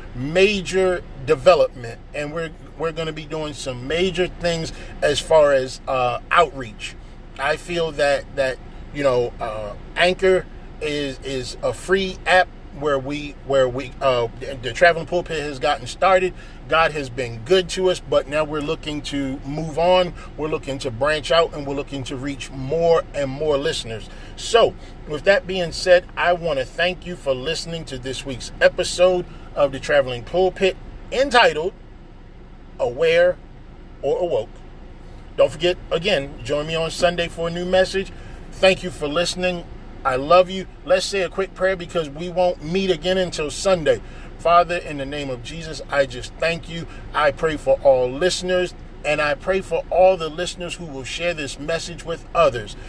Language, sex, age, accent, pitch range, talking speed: English, male, 40-59, American, 135-180 Hz, 170 wpm